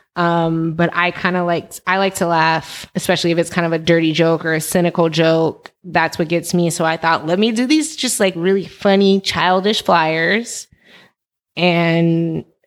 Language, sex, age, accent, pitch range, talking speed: English, female, 20-39, American, 170-190 Hz, 190 wpm